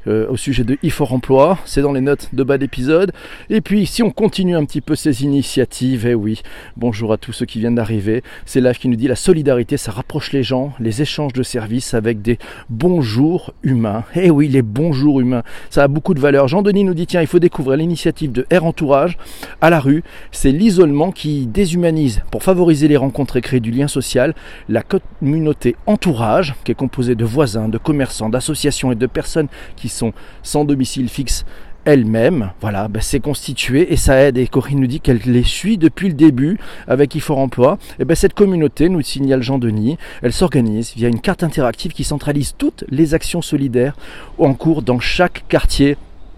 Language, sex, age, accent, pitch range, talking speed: French, male, 40-59, French, 120-160 Hz, 195 wpm